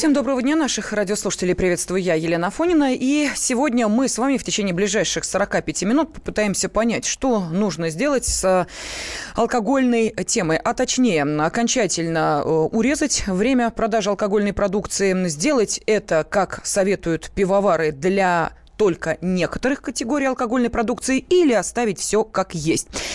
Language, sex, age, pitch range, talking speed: Russian, female, 20-39, 180-260 Hz, 130 wpm